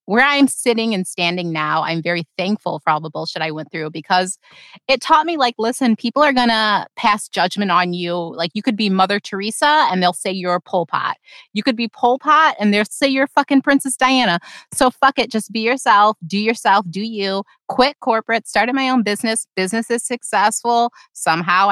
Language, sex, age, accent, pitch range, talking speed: English, female, 30-49, American, 175-235 Hz, 205 wpm